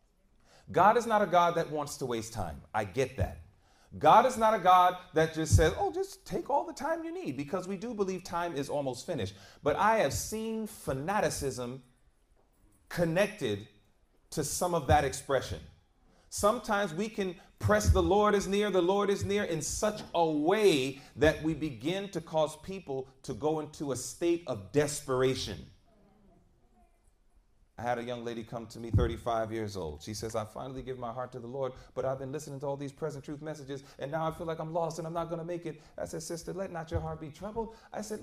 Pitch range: 130-205 Hz